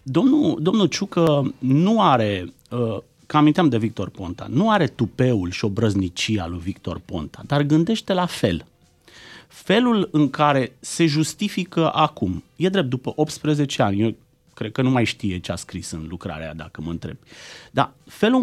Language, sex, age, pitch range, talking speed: Romanian, male, 30-49, 115-180 Hz, 160 wpm